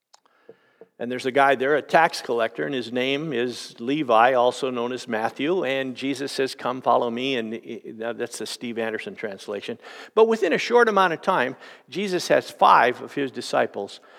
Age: 50-69